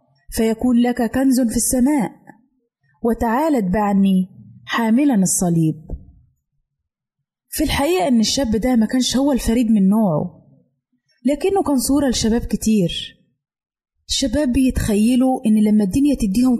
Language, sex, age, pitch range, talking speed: Arabic, female, 20-39, 175-255 Hz, 110 wpm